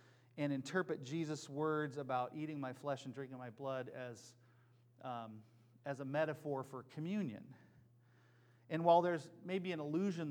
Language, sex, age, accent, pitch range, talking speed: English, male, 40-59, American, 120-155 Hz, 145 wpm